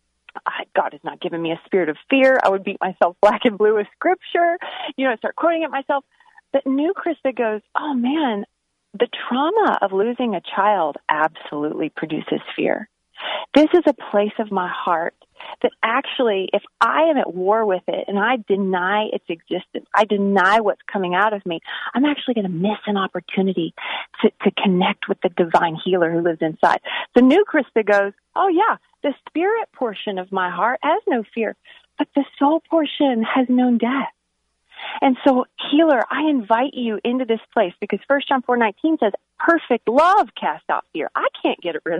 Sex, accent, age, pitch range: female, American, 40-59, 195-295 Hz